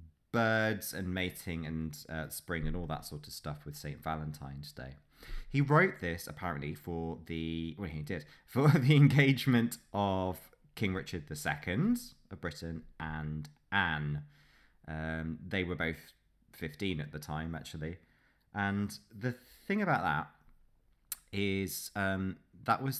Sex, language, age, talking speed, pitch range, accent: male, English, 20-39, 140 wpm, 75-100 Hz, British